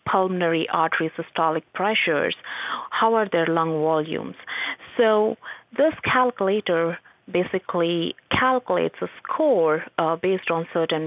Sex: female